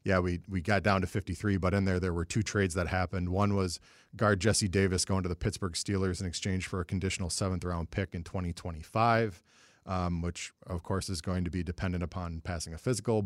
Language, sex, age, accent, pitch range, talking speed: English, male, 40-59, American, 90-100 Hz, 215 wpm